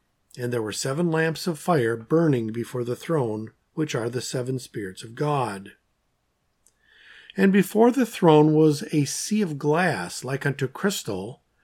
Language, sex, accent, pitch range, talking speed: English, male, American, 120-170 Hz, 155 wpm